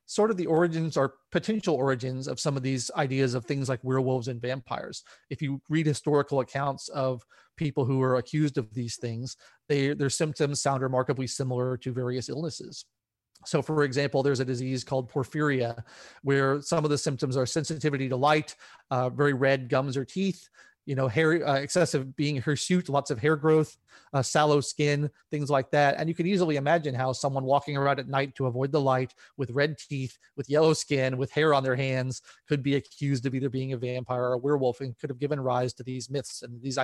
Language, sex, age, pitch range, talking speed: English, male, 30-49, 130-150 Hz, 205 wpm